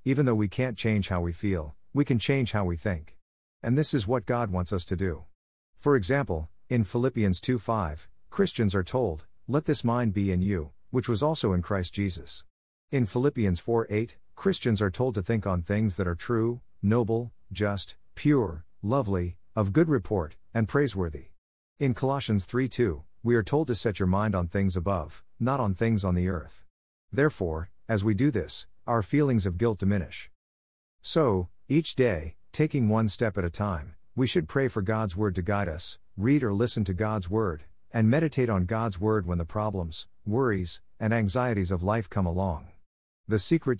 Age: 50-69